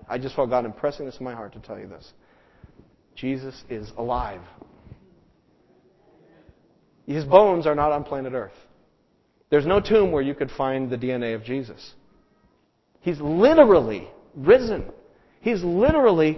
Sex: male